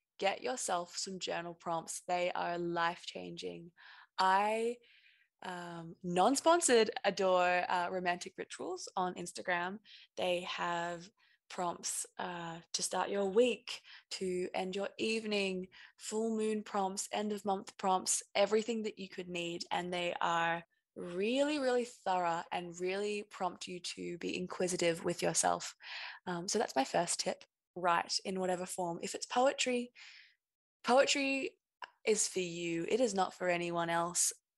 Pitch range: 175-220 Hz